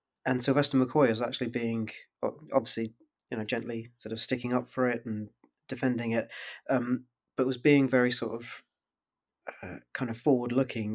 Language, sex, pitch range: English, male, 115-125 Hz